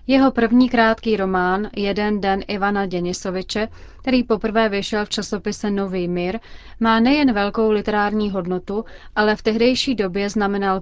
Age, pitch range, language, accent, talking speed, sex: 30-49, 195-225 Hz, Czech, native, 140 wpm, female